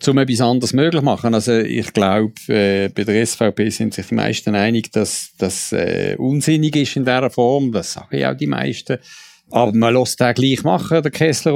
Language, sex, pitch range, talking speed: German, male, 110-135 Hz, 210 wpm